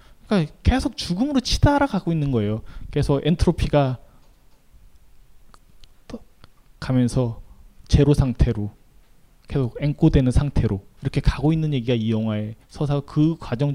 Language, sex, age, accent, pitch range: Korean, male, 20-39, native, 120-160 Hz